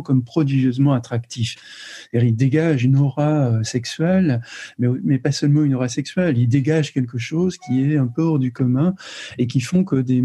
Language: French